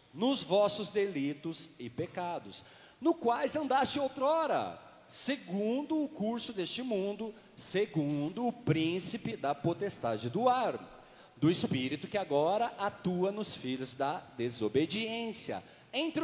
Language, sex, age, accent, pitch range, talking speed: Portuguese, male, 40-59, Brazilian, 185-260 Hz, 115 wpm